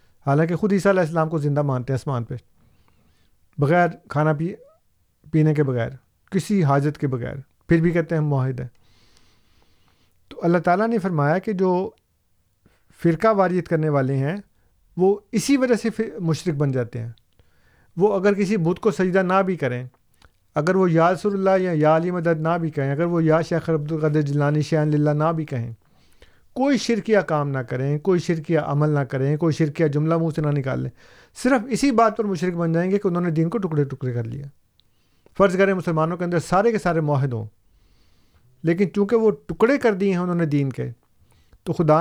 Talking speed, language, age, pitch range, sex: 195 wpm, Urdu, 50-69, 130-185 Hz, male